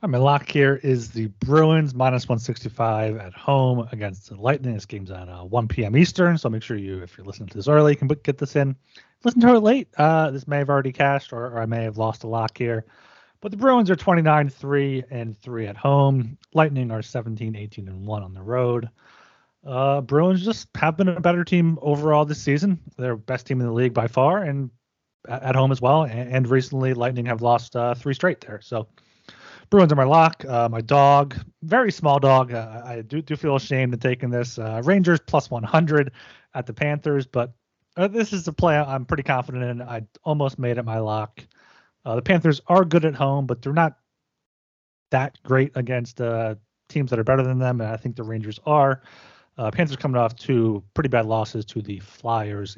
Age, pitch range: 30-49, 115-150 Hz